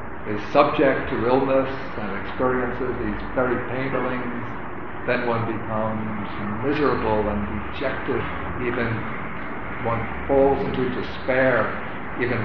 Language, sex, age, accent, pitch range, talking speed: English, male, 60-79, American, 105-130 Hz, 105 wpm